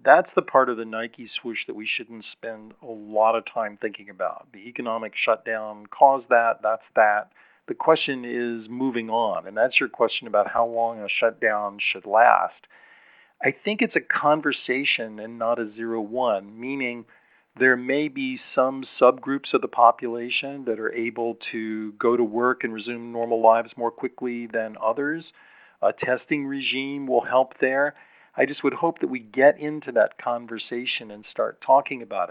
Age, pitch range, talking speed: 40-59, 115-135 Hz, 175 wpm